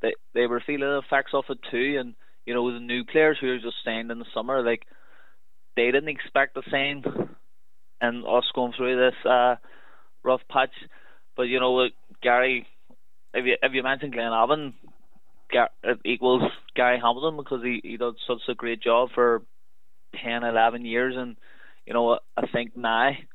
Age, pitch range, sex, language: 20-39, 115-130 Hz, male, English